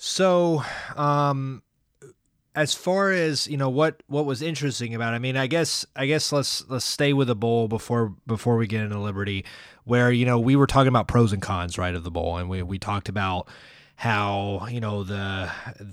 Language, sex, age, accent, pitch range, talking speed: English, male, 20-39, American, 100-120 Hz, 205 wpm